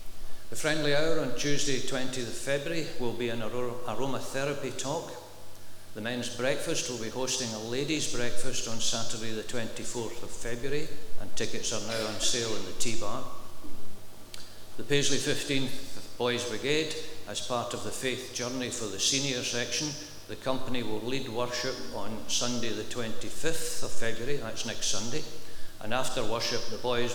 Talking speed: 160 wpm